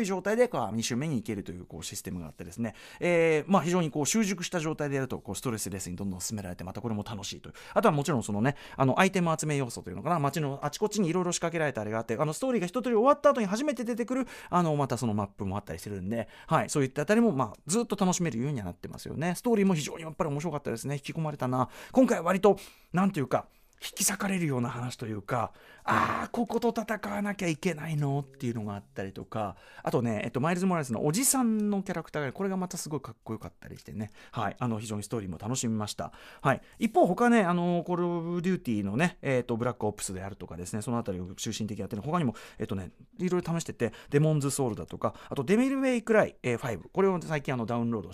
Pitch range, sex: 110-180 Hz, male